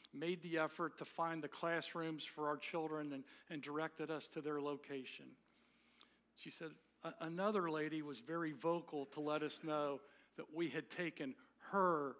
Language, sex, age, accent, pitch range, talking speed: English, male, 50-69, American, 150-175 Hz, 160 wpm